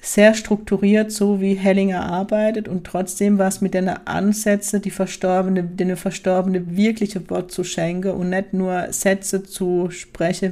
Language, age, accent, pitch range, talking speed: German, 40-59, German, 180-205 Hz, 155 wpm